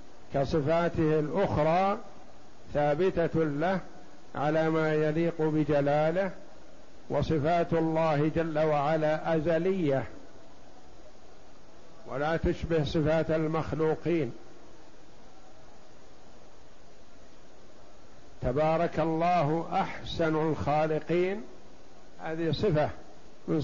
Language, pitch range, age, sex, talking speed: Arabic, 155-165 Hz, 60-79, male, 60 wpm